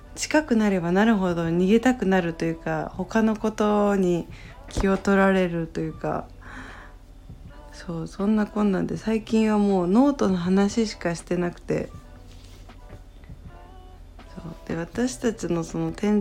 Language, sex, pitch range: Japanese, female, 155-215 Hz